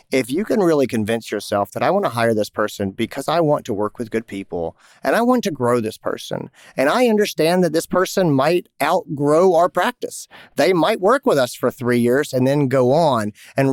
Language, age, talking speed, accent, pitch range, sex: English, 40-59, 225 wpm, American, 115-145 Hz, male